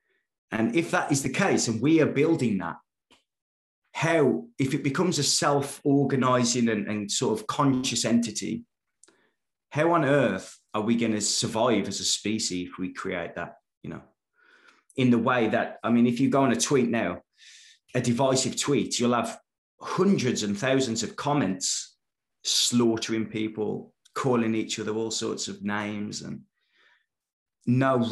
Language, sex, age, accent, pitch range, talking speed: English, male, 20-39, British, 105-130 Hz, 160 wpm